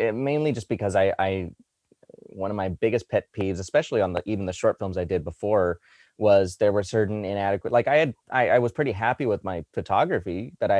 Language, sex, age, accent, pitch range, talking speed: English, male, 30-49, American, 90-110 Hz, 215 wpm